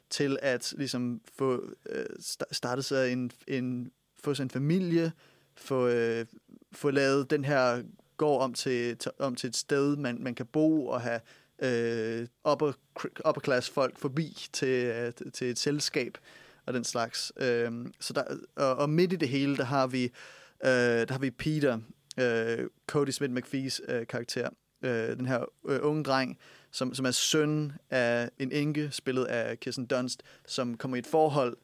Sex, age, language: male, 30-49, Danish